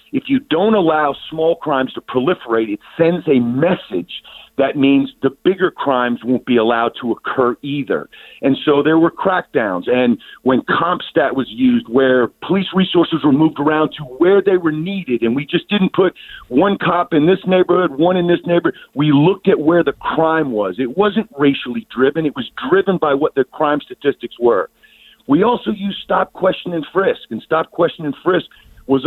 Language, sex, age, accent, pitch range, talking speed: English, male, 50-69, American, 140-190 Hz, 190 wpm